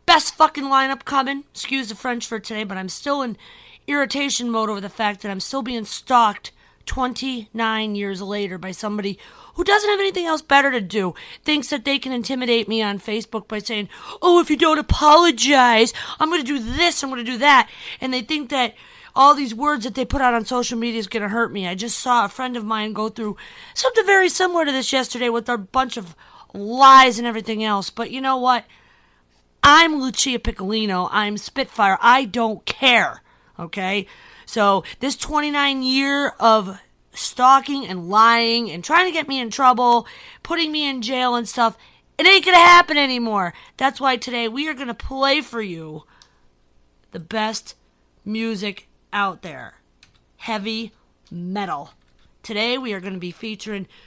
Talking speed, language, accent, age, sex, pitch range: 180 wpm, English, American, 40-59, female, 210-275 Hz